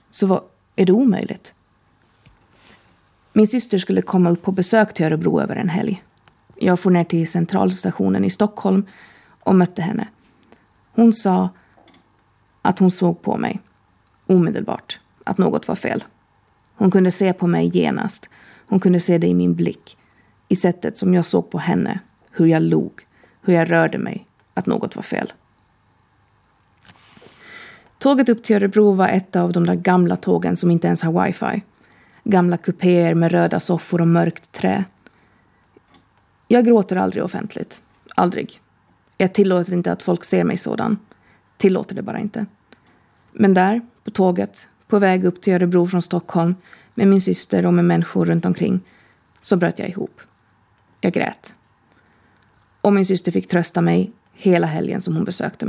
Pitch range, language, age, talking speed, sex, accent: 170-200 Hz, Swedish, 30-49, 155 wpm, female, native